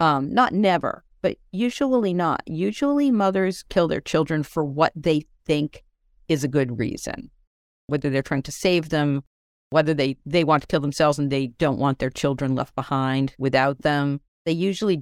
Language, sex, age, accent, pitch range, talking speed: English, female, 50-69, American, 135-170 Hz, 175 wpm